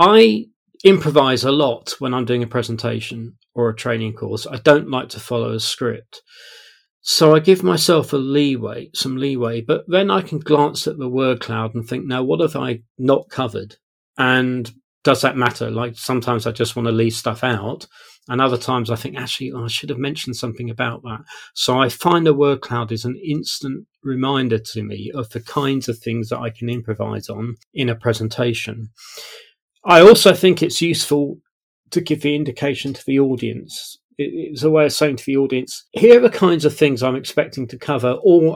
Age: 40-59